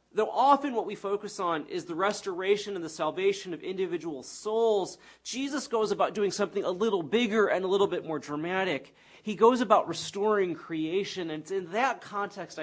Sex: male